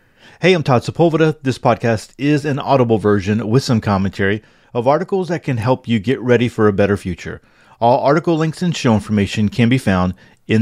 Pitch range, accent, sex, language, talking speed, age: 105-135 Hz, American, male, English, 200 wpm, 40-59